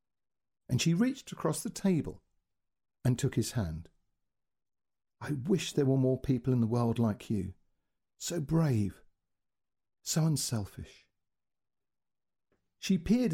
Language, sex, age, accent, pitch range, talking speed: English, male, 50-69, British, 100-140 Hz, 120 wpm